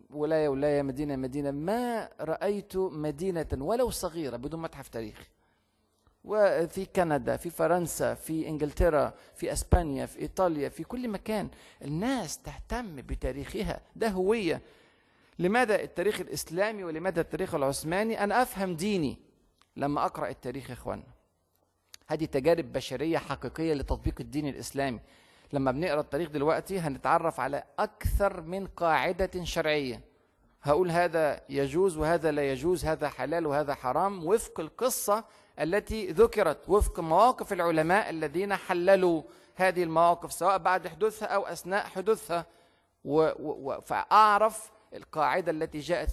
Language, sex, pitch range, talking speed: Arabic, male, 145-190 Hz, 120 wpm